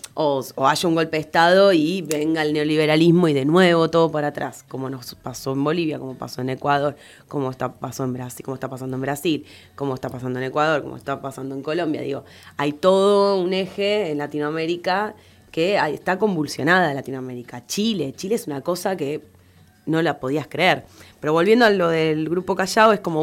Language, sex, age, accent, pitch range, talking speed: Spanish, female, 20-39, Argentinian, 140-170 Hz, 200 wpm